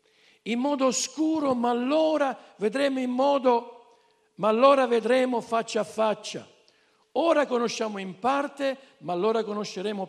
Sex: male